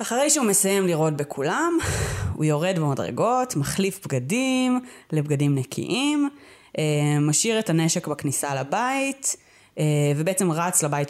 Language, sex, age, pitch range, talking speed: Hebrew, female, 20-39, 150-205 Hz, 110 wpm